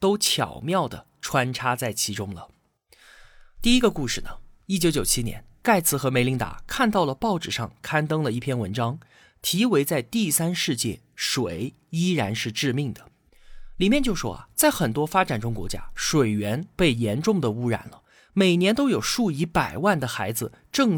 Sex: male